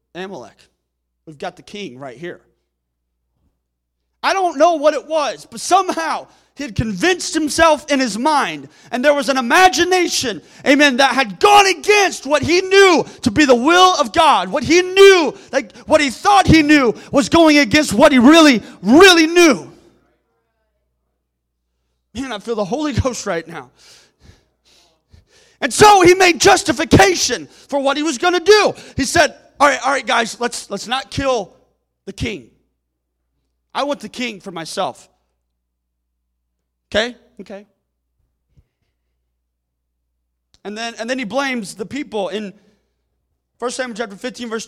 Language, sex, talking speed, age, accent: English, male, 150 wpm, 30-49, American